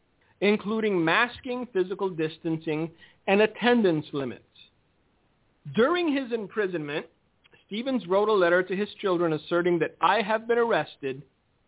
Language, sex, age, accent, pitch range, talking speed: English, male, 50-69, American, 160-220 Hz, 120 wpm